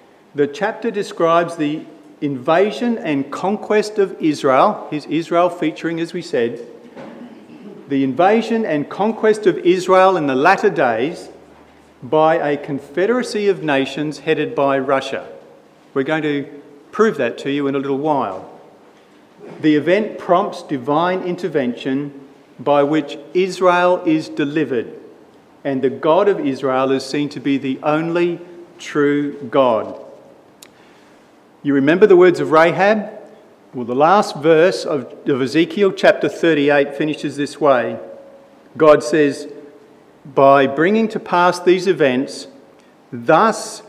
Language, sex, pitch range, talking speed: English, male, 140-185 Hz, 125 wpm